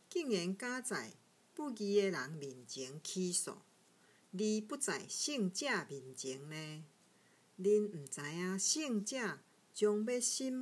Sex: female